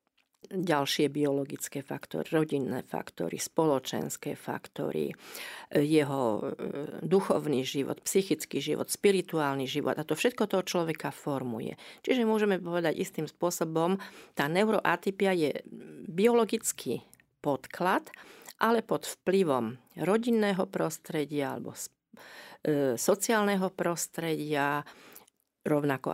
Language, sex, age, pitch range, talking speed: Slovak, female, 50-69, 145-190 Hz, 90 wpm